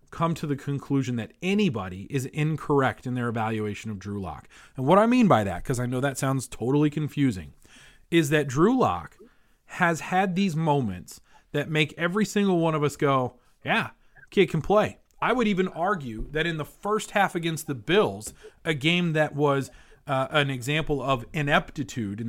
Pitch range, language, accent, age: 125-170 Hz, English, American, 30-49